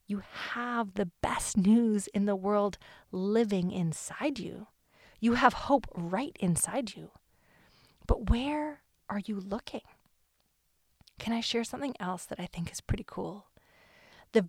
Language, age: English, 30-49